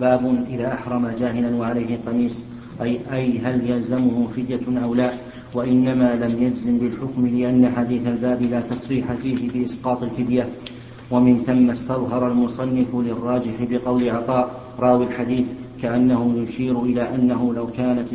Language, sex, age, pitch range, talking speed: Arabic, male, 50-69, 120-130 Hz, 135 wpm